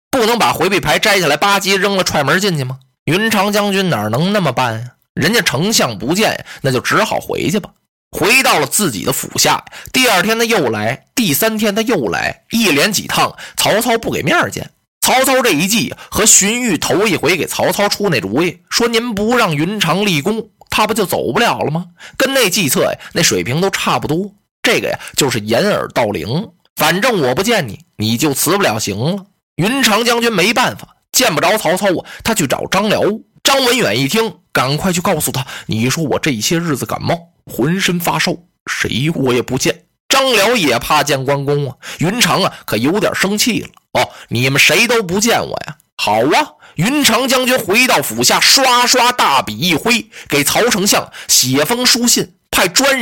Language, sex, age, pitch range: Chinese, male, 20-39, 150-230 Hz